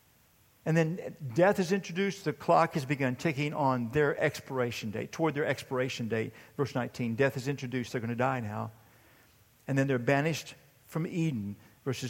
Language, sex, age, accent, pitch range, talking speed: English, male, 50-69, American, 125-165 Hz, 175 wpm